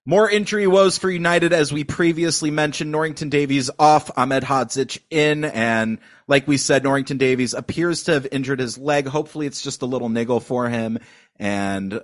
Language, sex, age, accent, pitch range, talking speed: English, male, 30-49, American, 120-155 Hz, 180 wpm